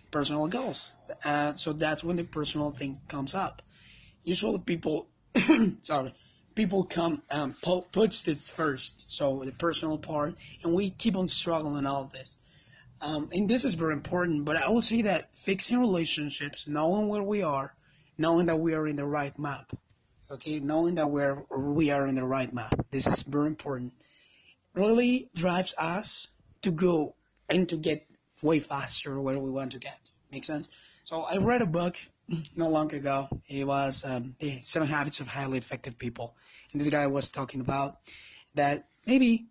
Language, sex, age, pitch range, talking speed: English, male, 30-49, 140-175 Hz, 175 wpm